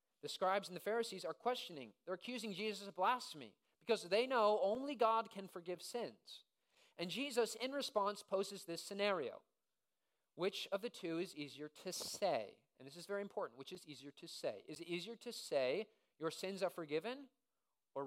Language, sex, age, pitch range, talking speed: English, male, 40-59, 175-230 Hz, 185 wpm